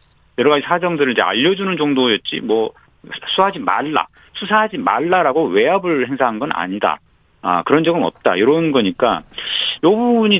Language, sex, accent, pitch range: Korean, male, native, 125-190 Hz